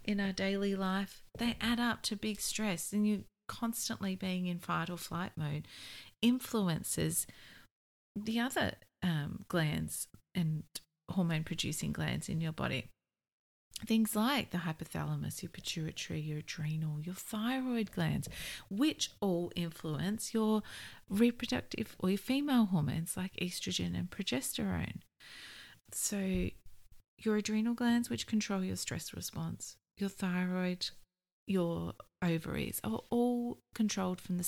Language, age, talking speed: English, 30-49, 125 wpm